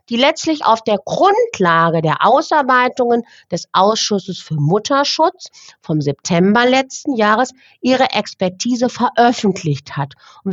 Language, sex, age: German, female, 50-69